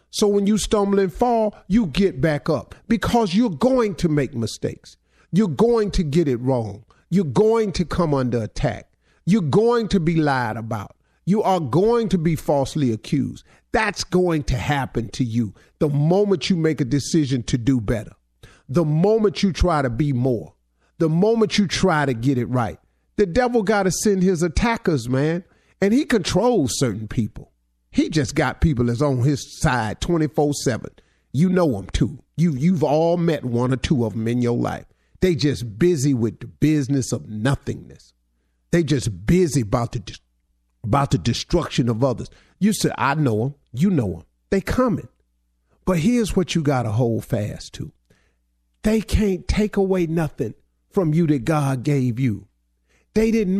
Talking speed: 180 wpm